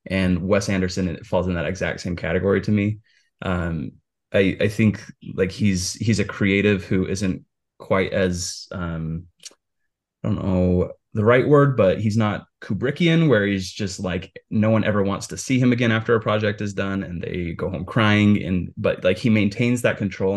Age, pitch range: 20-39, 90-105 Hz